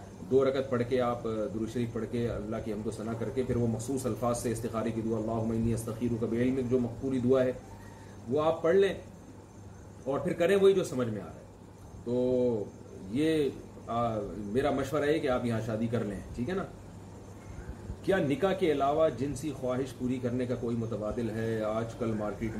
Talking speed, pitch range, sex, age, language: 200 wpm, 105-130 Hz, male, 30-49, Urdu